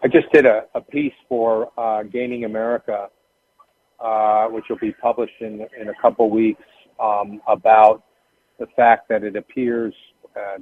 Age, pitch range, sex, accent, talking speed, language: 50-69, 105-125 Hz, male, American, 160 wpm, English